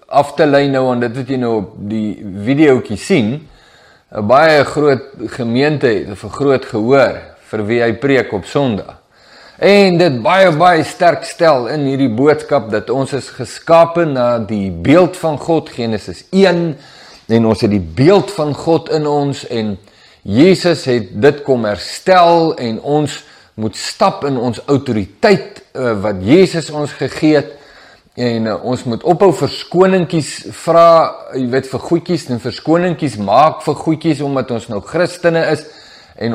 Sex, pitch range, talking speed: male, 115-165 Hz, 155 wpm